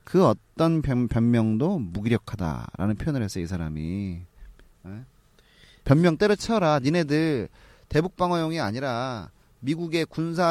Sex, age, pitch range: male, 30-49, 105-160 Hz